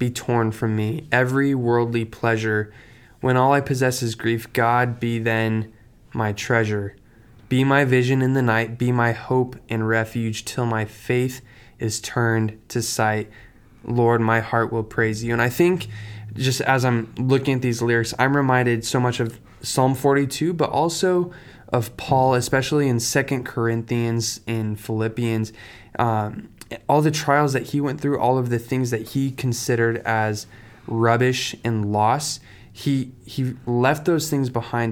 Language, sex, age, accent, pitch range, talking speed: English, male, 20-39, American, 110-125 Hz, 160 wpm